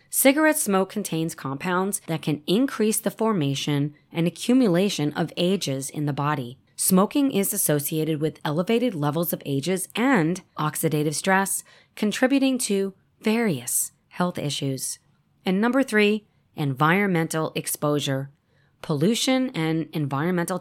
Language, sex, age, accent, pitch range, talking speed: English, female, 20-39, American, 150-210 Hz, 115 wpm